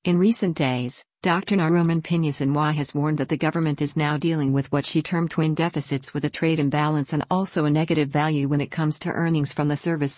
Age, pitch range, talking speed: 50-69, 145-165 Hz, 225 wpm